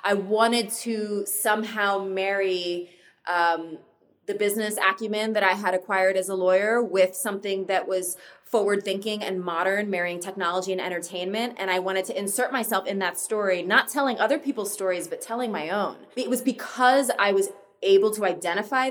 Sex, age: female, 20-39